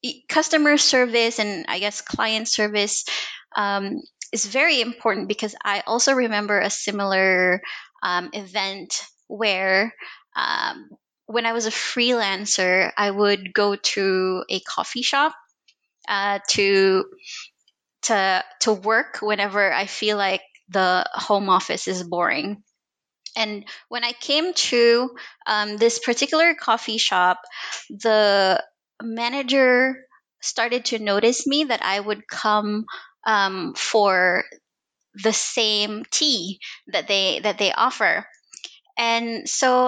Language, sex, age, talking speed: English, female, 20-39, 120 wpm